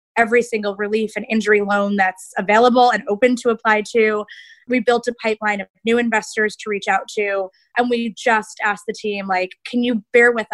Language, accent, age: English, American, 20-39